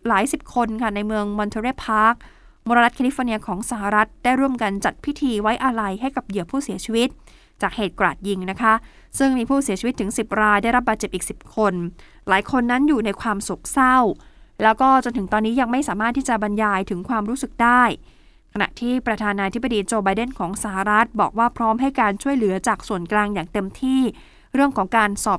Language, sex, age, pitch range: Thai, female, 20-39, 200-250 Hz